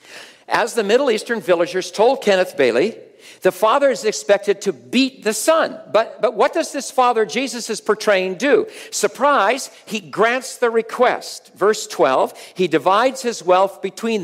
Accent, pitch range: American, 195-265 Hz